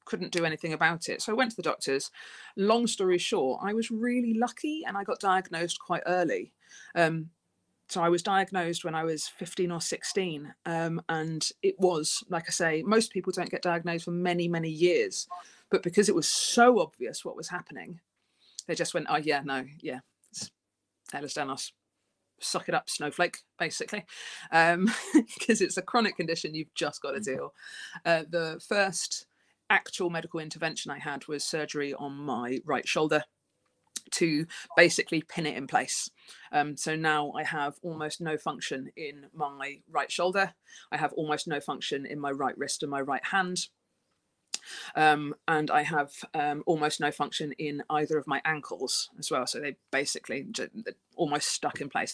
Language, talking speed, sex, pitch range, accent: English, 175 wpm, female, 150-185 Hz, British